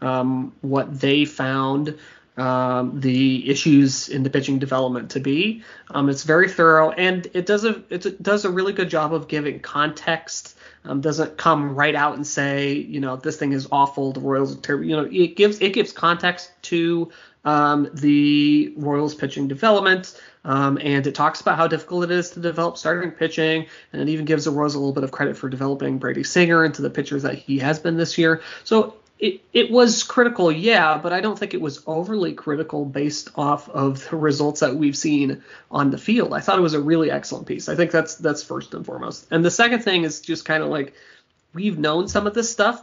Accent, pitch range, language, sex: American, 140-175 Hz, English, male